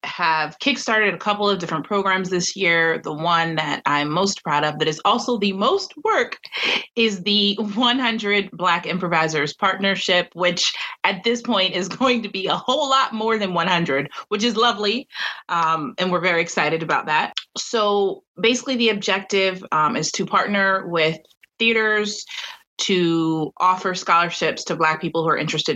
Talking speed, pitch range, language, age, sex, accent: 165 wpm, 170-215 Hz, English, 30-49, female, American